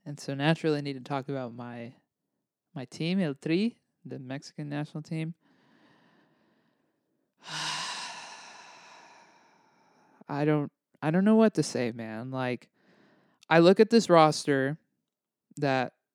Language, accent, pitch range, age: English, American, 145-205 Hz, 20-39